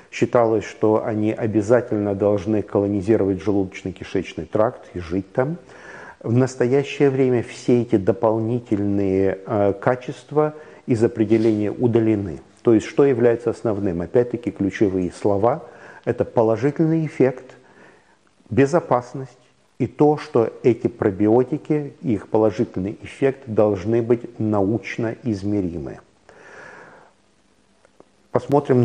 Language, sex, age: Russian, male, 50-69